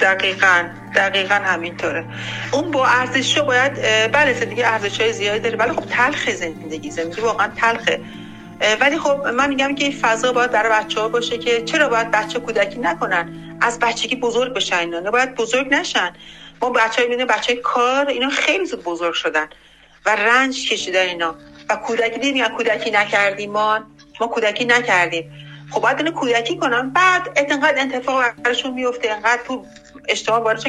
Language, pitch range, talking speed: Persian, 205-260 Hz, 170 wpm